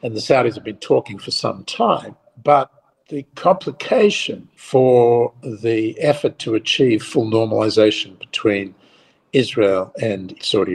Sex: male